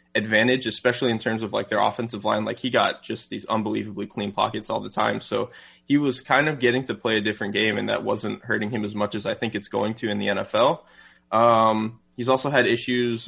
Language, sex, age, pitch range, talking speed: English, male, 20-39, 105-125 Hz, 235 wpm